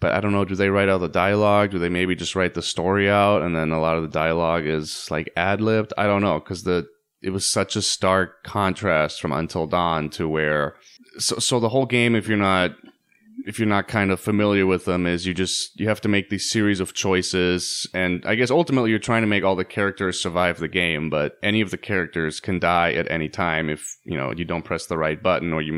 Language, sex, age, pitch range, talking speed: English, male, 20-39, 85-105 Hz, 250 wpm